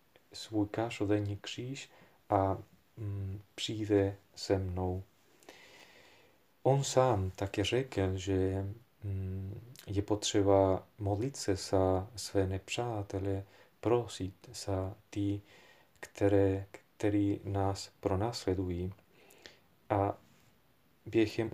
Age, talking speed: 40-59, 85 wpm